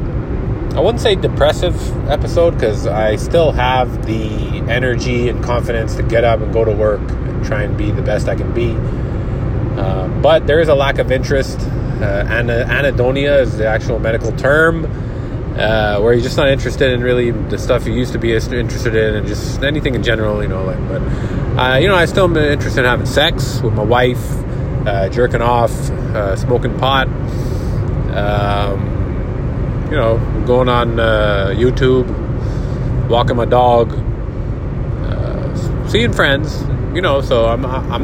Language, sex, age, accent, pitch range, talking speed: English, male, 20-39, American, 115-130 Hz, 165 wpm